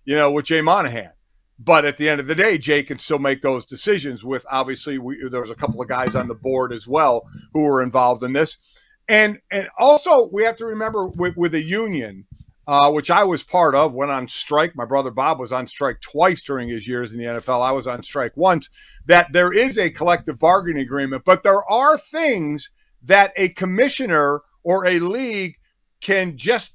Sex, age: male, 50-69